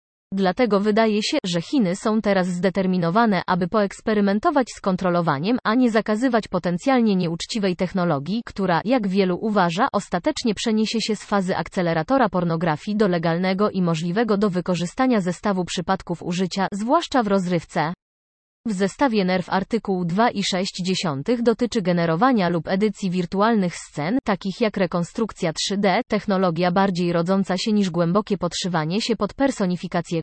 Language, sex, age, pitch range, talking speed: Polish, female, 20-39, 180-215 Hz, 135 wpm